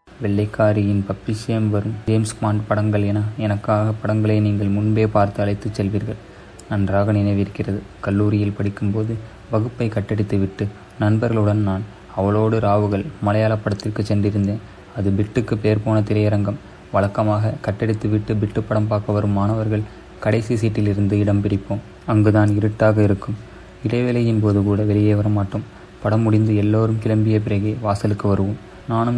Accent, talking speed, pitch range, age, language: native, 125 wpm, 100-110 Hz, 20-39, Tamil